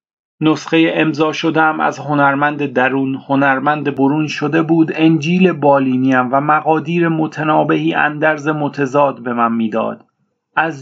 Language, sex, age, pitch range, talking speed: Persian, male, 40-59, 145-160 Hz, 115 wpm